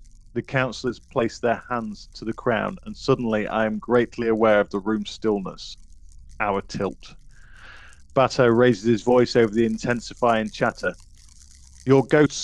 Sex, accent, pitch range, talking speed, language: male, British, 105-140 Hz, 145 wpm, English